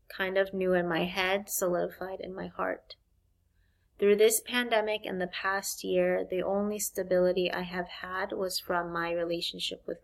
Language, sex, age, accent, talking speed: French, female, 20-39, American, 165 wpm